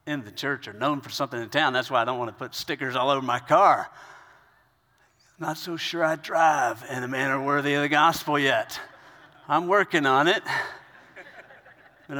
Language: English